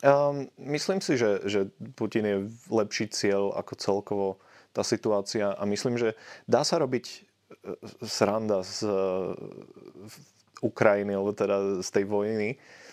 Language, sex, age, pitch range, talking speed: Slovak, male, 20-39, 95-105 Hz, 120 wpm